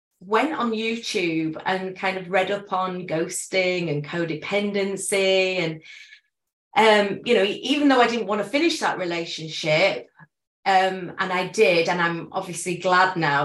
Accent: British